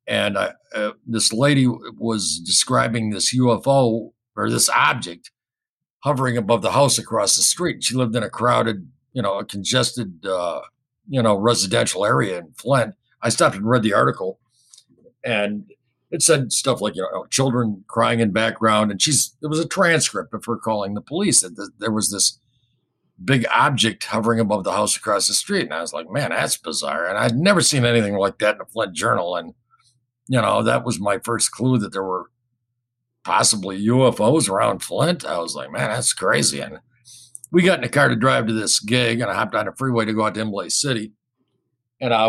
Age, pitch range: 50-69, 110-125 Hz